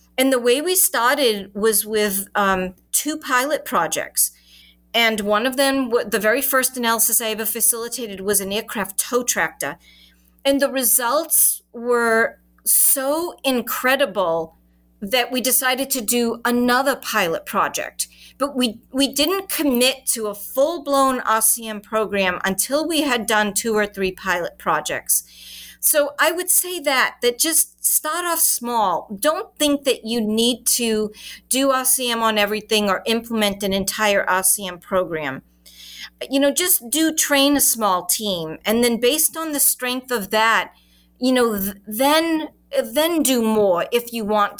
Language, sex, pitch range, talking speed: English, female, 205-275 Hz, 150 wpm